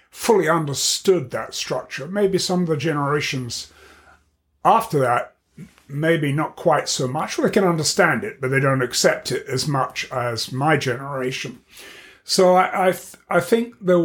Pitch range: 130-160 Hz